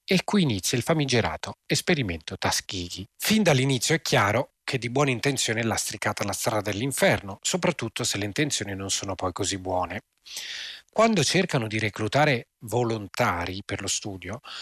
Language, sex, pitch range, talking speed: Italian, male, 105-140 Hz, 150 wpm